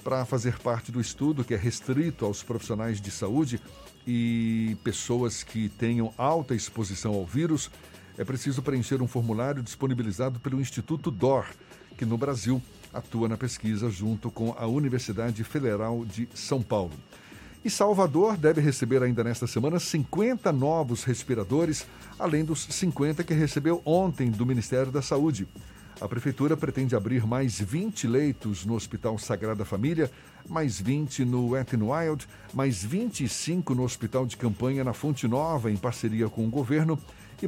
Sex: male